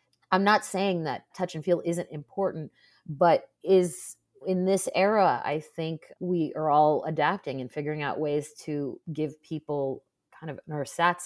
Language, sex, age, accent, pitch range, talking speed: English, female, 30-49, American, 145-175 Hz, 165 wpm